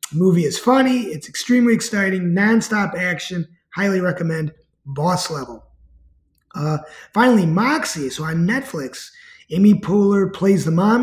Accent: American